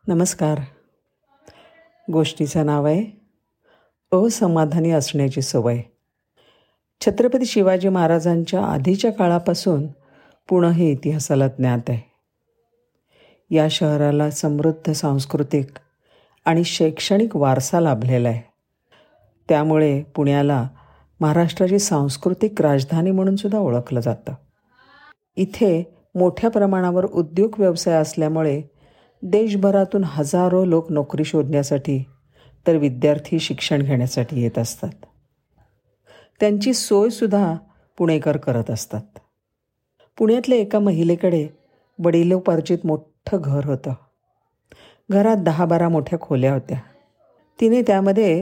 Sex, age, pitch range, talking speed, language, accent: female, 50-69, 145-195 Hz, 90 wpm, Marathi, native